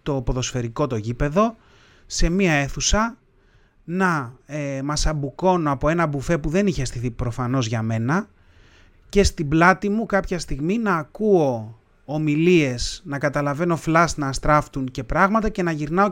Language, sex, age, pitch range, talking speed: Greek, male, 30-49, 125-160 Hz, 150 wpm